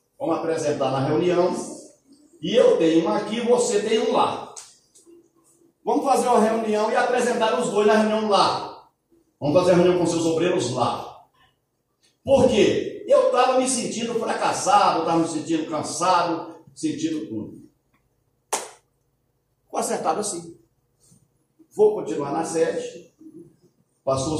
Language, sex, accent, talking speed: Portuguese, male, Brazilian, 130 wpm